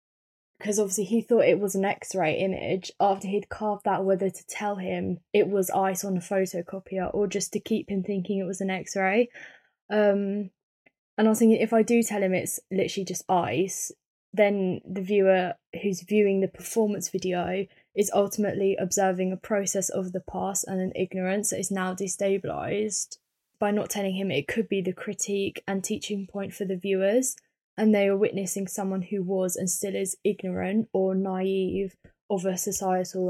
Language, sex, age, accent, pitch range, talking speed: English, female, 10-29, British, 185-205 Hz, 180 wpm